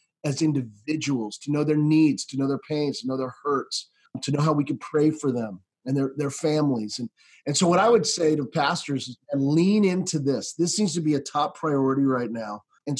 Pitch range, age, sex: 140-175 Hz, 30-49, male